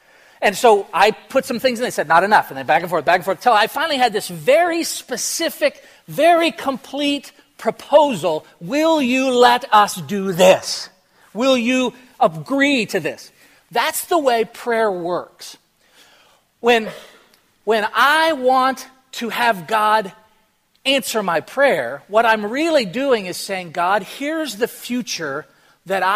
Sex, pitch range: male, 195-275 Hz